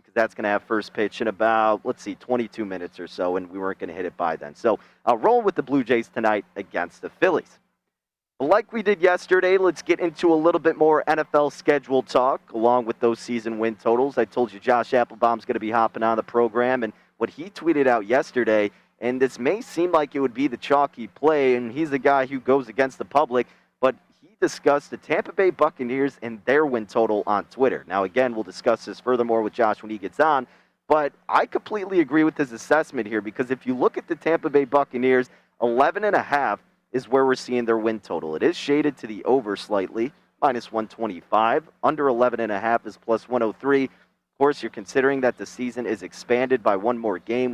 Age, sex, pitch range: 30-49, male, 115-145 Hz